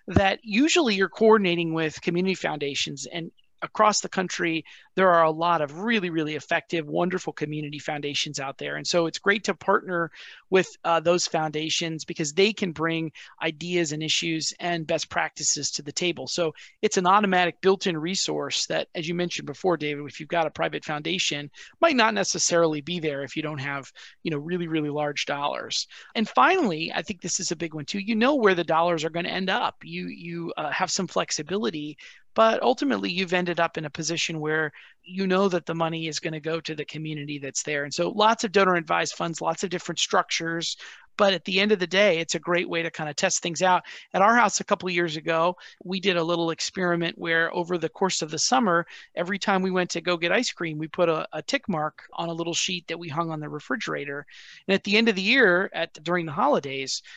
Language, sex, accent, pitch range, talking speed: English, male, American, 160-190 Hz, 225 wpm